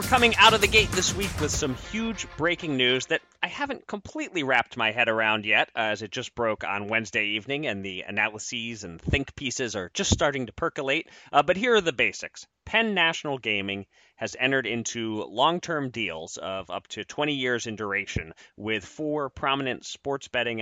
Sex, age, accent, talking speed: male, 30-49, American, 195 wpm